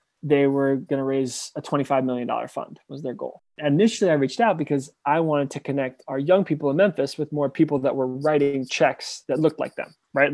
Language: English